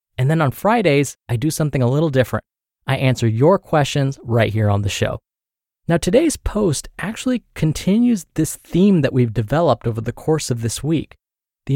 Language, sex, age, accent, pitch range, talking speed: English, male, 20-39, American, 115-155 Hz, 185 wpm